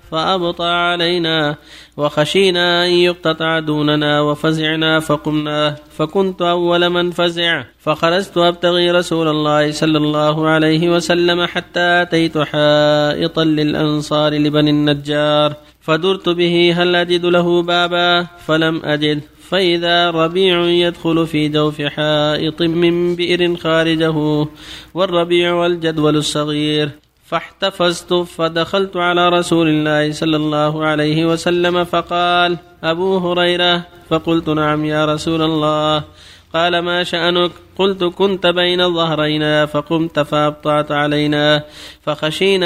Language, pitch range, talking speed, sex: Arabic, 150-175 Hz, 105 wpm, male